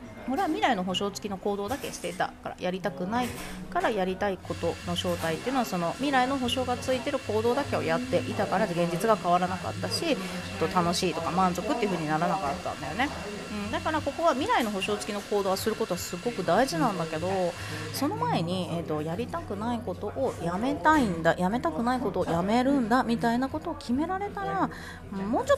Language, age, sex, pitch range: Japanese, 30-49, female, 175-240 Hz